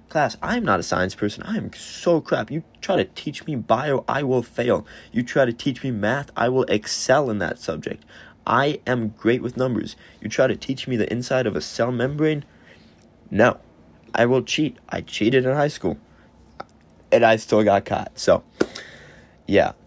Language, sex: English, male